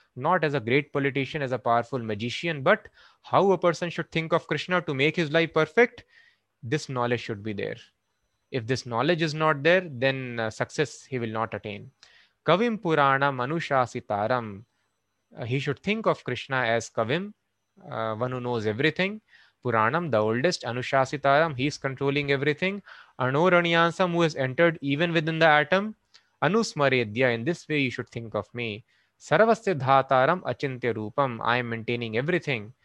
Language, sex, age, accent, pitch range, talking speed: English, male, 20-39, Indian, 120-165 Hz, 160 wpm